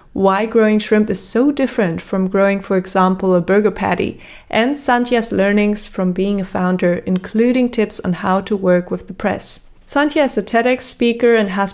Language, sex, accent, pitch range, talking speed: English, female, German, 185-220 Hz, 185 wpm